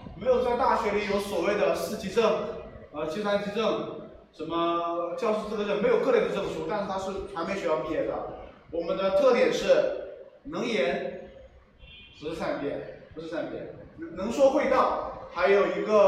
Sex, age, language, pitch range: male, 20-39, Chinese, 190-270 Hz